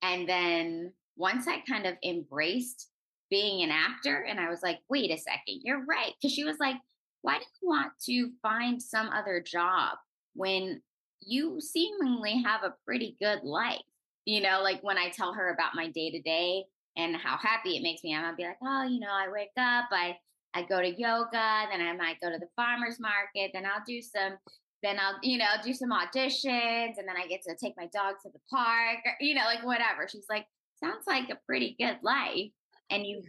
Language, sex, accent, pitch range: English, female, American, 175-250 Hz